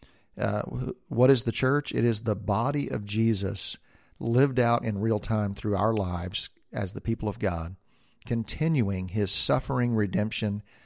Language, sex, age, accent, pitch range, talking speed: English, male, 50-69, American, 100-115 Hz, 150 wpm